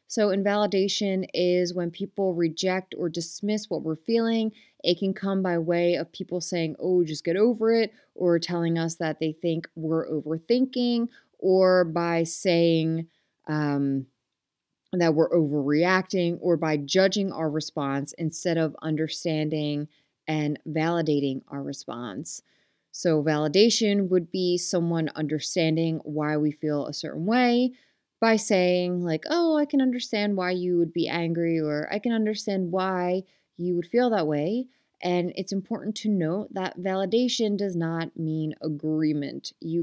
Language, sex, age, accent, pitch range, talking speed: English, female, 30-49, American, 155-200 Hz, 145 wpm